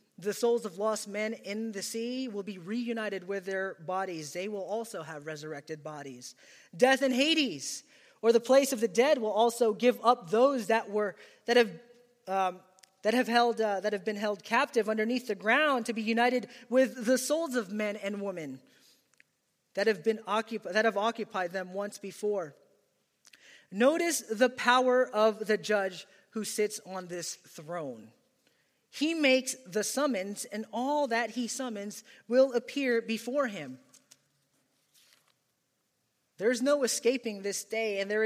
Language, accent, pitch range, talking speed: English, American, 200-245 Hz, 160 wpm